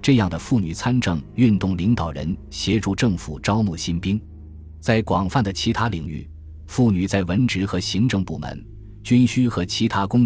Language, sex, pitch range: Chinese, male, 85-115 Hz